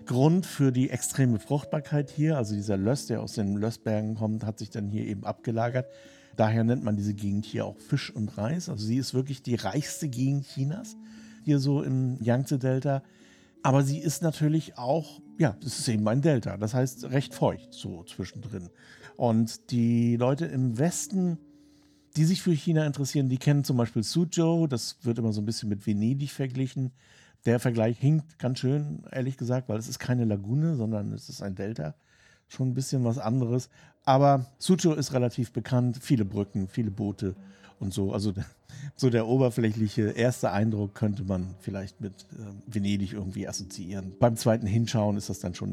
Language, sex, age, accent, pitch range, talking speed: German, male, 50-69, German, 105-140 Hz, 180 wpm